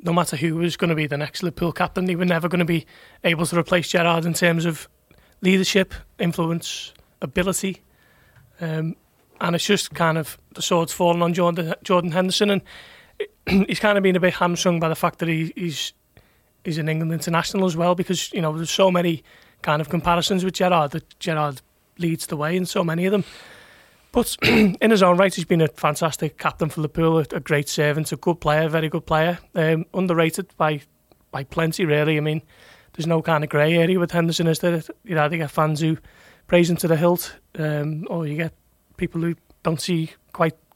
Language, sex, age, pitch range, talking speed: English, male, 30-49, 155-175 Hz, 205 wpm